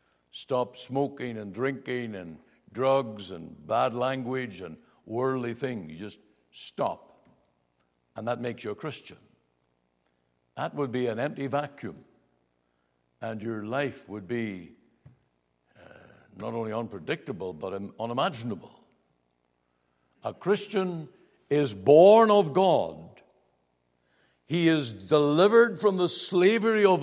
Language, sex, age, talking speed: English, male, 60-79, 115 wpm